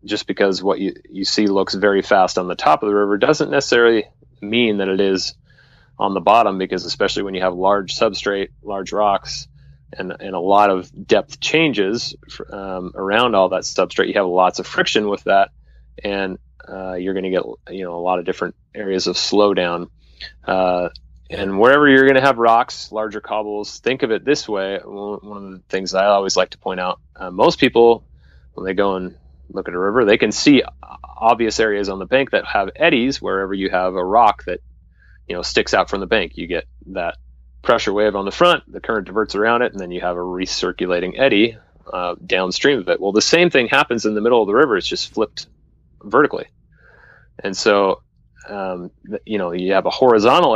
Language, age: English, 30-49